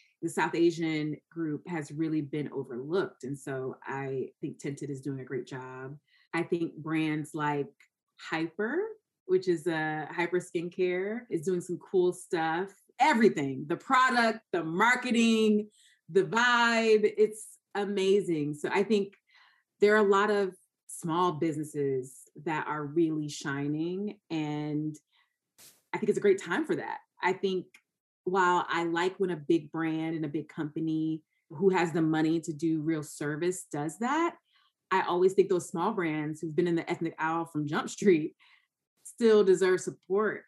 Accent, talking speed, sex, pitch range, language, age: American, 155 wpm, female, 155-215 Hz, English, 30-49